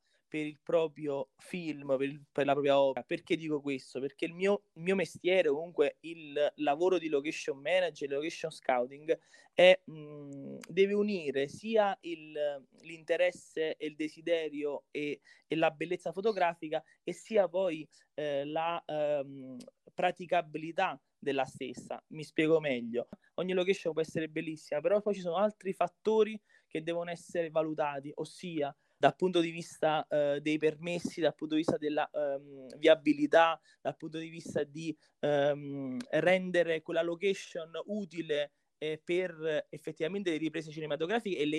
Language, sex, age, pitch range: Italian, male, 20-39, 150-185 Hz